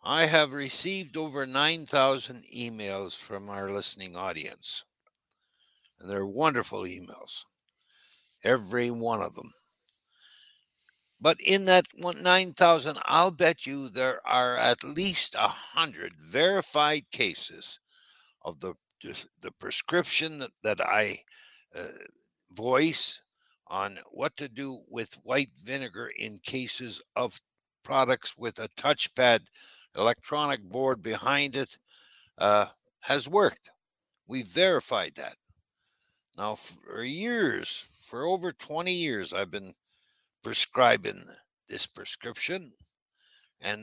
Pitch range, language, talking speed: 115-165 Hz, English, 110 wpm